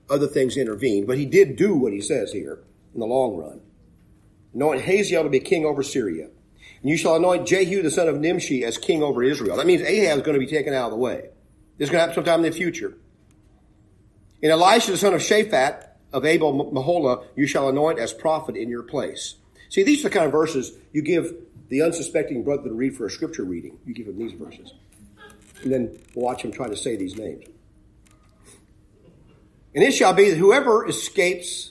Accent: American